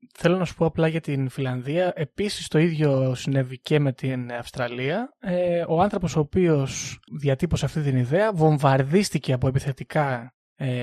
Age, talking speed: 20-39, 160 wpm